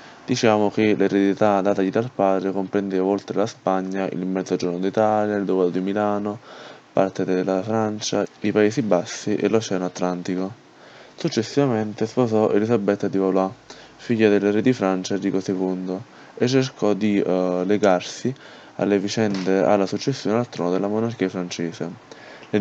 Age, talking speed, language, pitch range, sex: 20-39, 140 wpm, Italian, 95-115 Hz, male